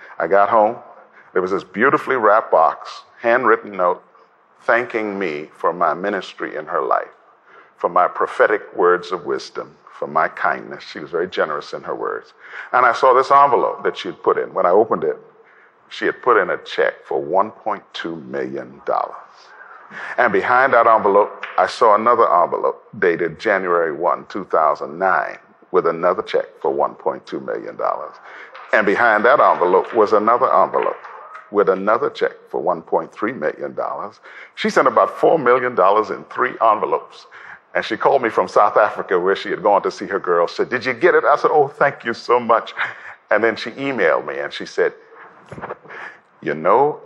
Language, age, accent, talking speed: English, 40-59, American, 170 wpm